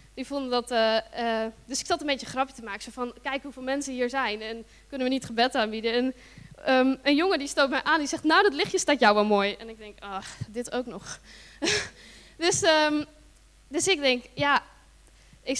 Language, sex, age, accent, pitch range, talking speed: Dutch, female, 10-29, Dutch, 230-295 Hz, 225 wpm